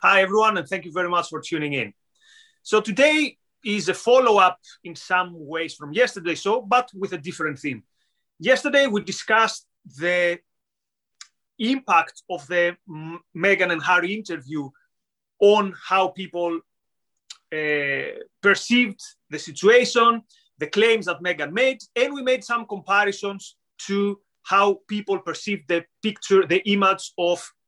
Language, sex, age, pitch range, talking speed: English, male, 30-49, 170-215 Hz, 135 wpm